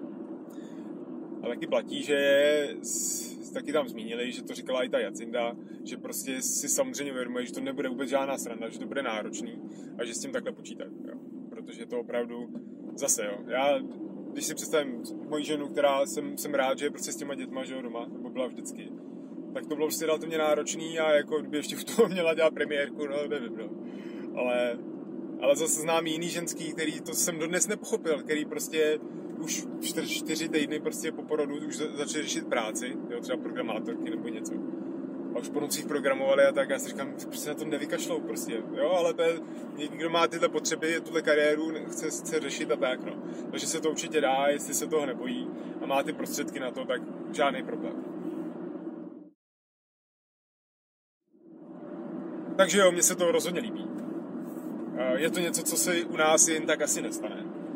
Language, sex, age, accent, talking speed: Czech, male, 20-39, native, 180 wpm